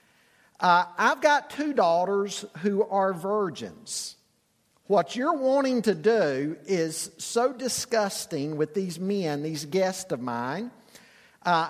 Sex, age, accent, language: male, 50-69, American, English